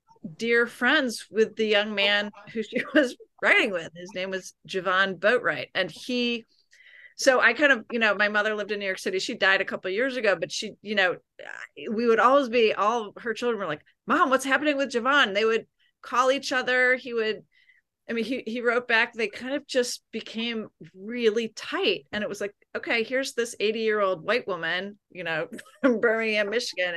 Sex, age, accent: female, 30-49, American